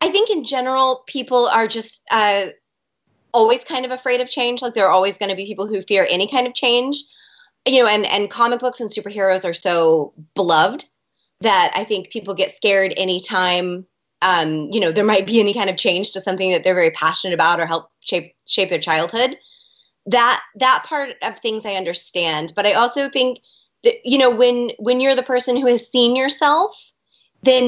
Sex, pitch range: female, 185-240 Hz